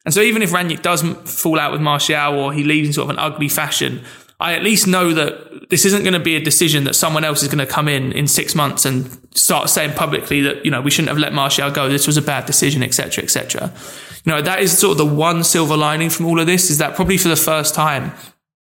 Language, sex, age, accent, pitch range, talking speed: English, male, 20-39, British, 140-165 Hz, 275 wpm